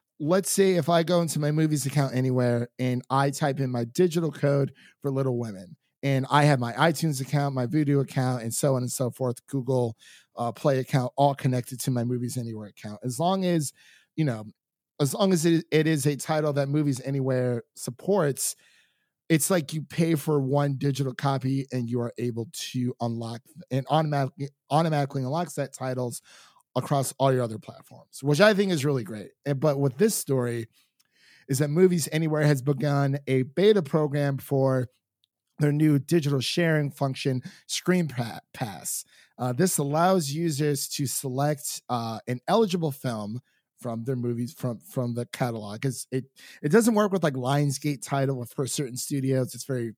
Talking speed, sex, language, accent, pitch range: 175 wpm, male, English, American, 125-155 Hz